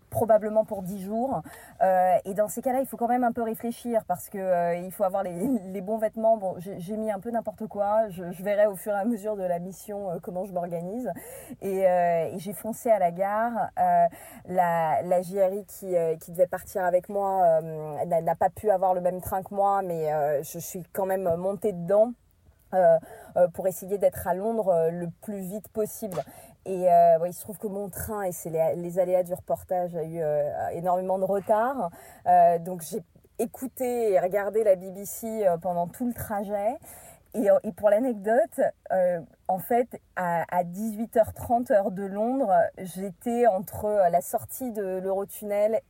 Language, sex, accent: French, female, French